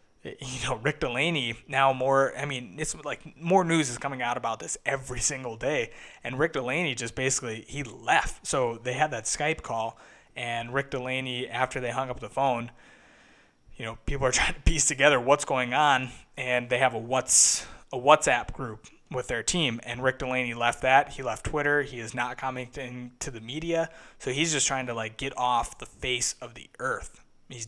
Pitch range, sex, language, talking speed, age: 120-150 Hz, male, English, 200 wpm, 20-39